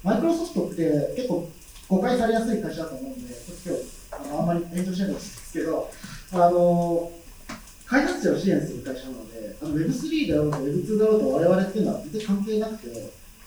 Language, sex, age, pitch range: Japanese, male, 40-59, 170-220 Hz